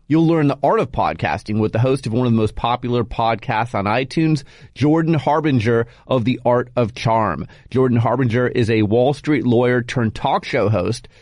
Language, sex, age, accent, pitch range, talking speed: English, male, 30-49, American, 110-145 Hz, 195 wpm